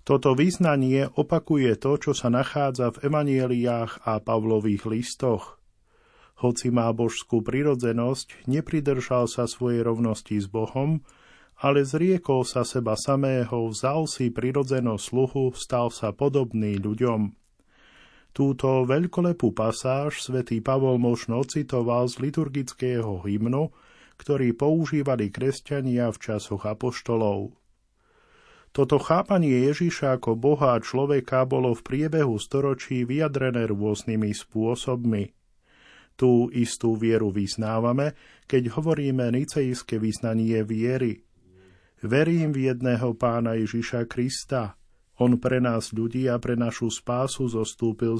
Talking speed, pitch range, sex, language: 110 wpm, 115-135 Hz, male, Slovak